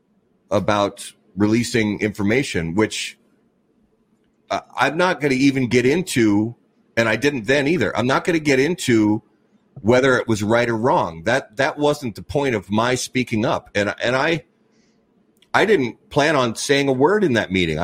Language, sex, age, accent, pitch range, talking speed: English, male, 40-59, American, 110-145 Hz, 170 wpm